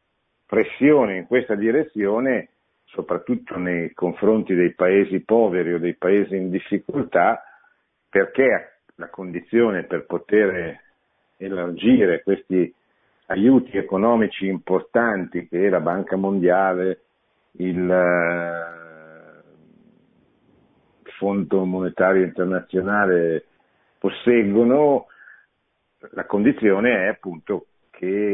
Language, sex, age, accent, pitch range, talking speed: Italian, male, 50-69, native, 85-105 Hz, 85 wpm